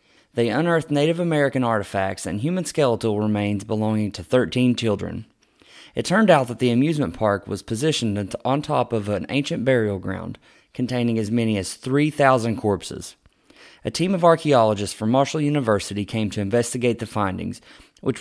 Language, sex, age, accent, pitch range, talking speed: English, male, 20-39, American, 105-130 Hz, 160 wpm